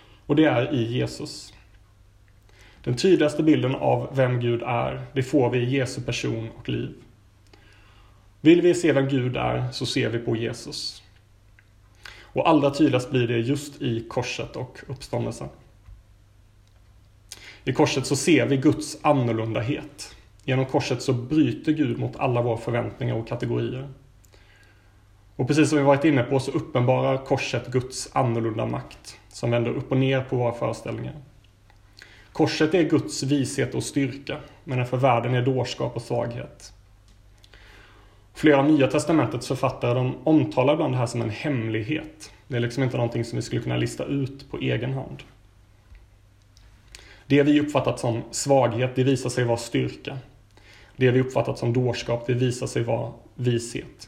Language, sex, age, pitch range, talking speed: Swedish, male, 30-49, 105-135 Hz, 155 wpm